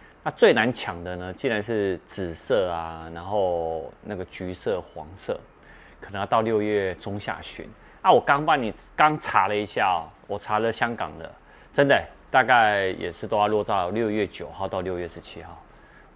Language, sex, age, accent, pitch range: Chinese, male, 30-49, native, 90-115 Hz